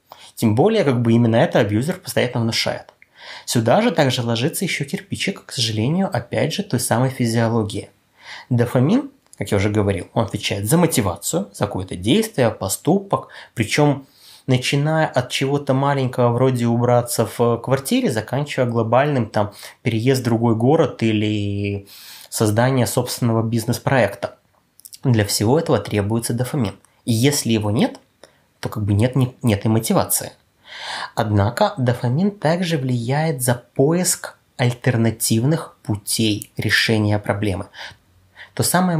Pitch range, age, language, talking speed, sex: 110-140 Hz, 20-39, Russian, 130 wpm, male